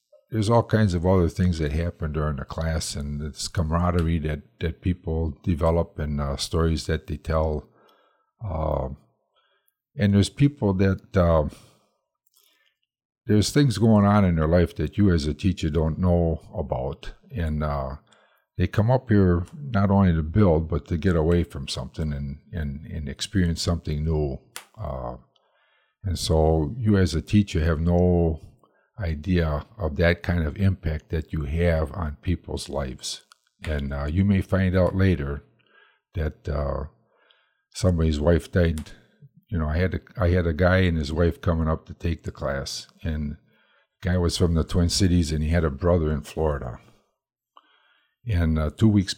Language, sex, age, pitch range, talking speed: English, male, 50-69, 75-95 Hz, 165 wpm